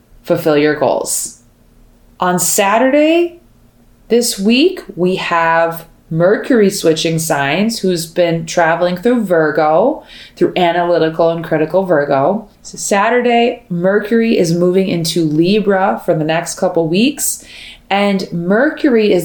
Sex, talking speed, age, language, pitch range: female, 115 wpm, 20-39, English, 160-195 Hz